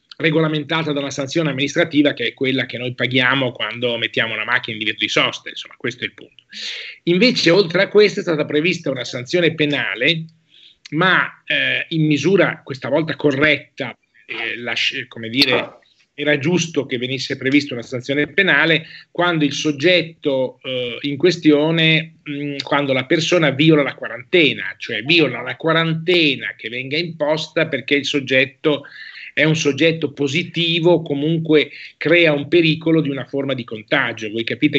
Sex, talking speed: male, 155 wpm